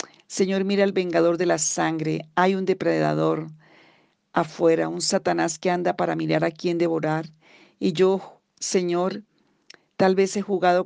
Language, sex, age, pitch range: Spanish, female, 40-59, 160-180 Hz